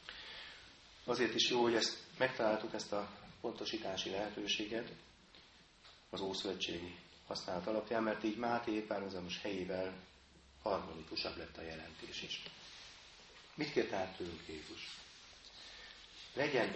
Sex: male